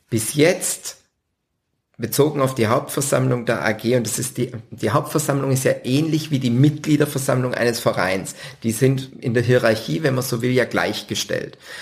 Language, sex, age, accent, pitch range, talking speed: German, male, 50-69, German, 115-130 Hz, 170 wpm